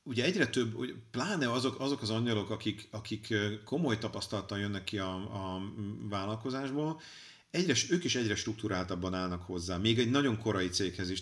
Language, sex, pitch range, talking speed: Hungarian, male, 100-125 Hz, 165 wpm